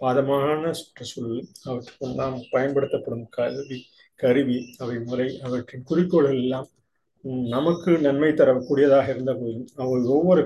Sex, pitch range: male, 125-150 Hz